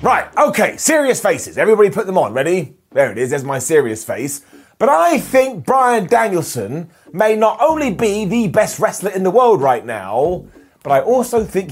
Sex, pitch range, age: male, 160-220 Hz, 30-49